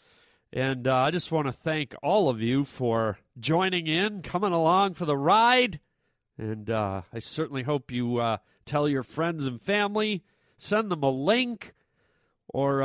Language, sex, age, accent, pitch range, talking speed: English, male, 40-59, American, 135-200 Hz, 165 wpm